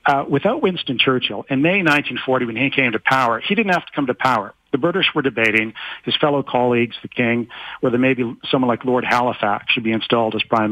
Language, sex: English, male